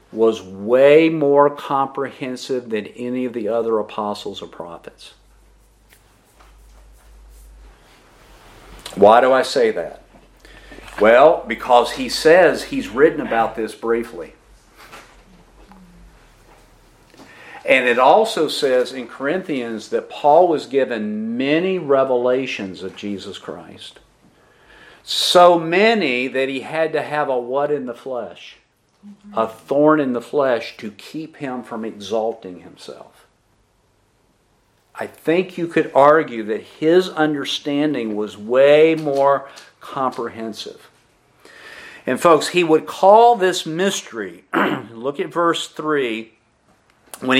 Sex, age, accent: male, 50-69, American